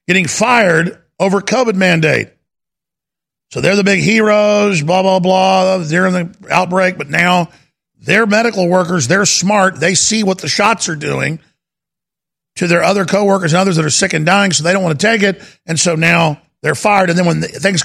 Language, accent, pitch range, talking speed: English, American, 160-200 Hz, 190 wpm